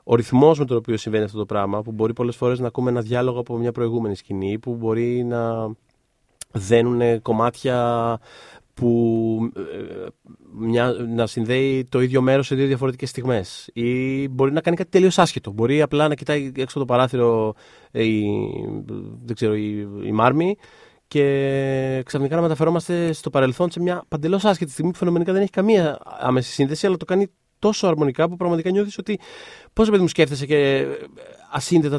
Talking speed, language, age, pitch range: 165 wpm, Greek, 30-49, 125-175 Hz